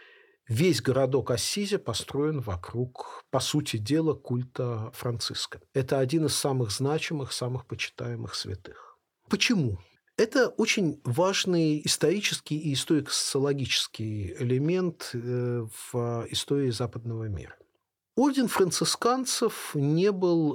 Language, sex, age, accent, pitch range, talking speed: Russian, male, 40-59, native, 125-165 Hz, 100 wpm